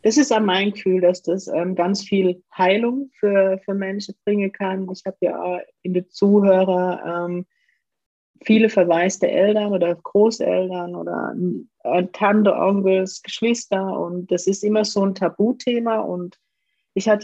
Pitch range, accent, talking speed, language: 180-205 Hz, German, 155 wpm, German